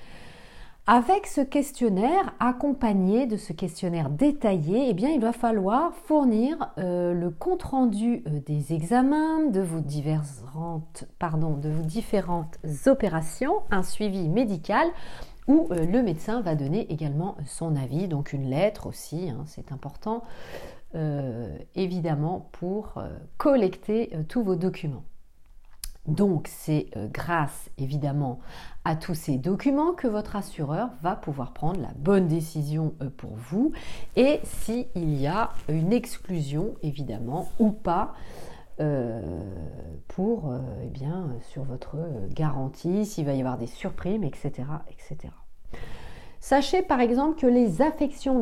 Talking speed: 125 wpm